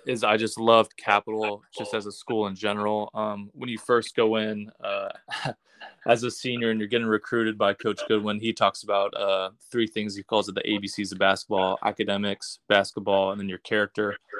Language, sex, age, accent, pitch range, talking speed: English, male, 20-39, American, 100-115 Hz, 195 wpm